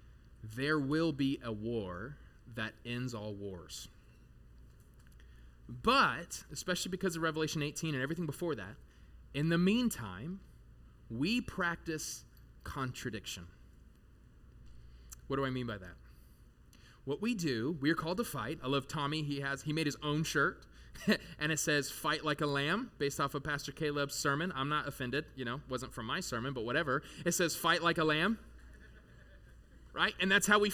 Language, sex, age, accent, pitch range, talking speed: English, male, 20-39, American, 125-185 Hz, 165 wpm